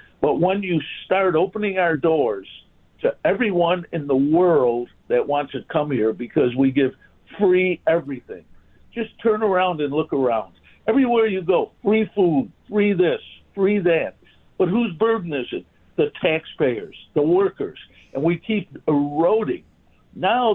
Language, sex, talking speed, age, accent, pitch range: English, male, 150 wpm, 60-79, American, 150-210 Hz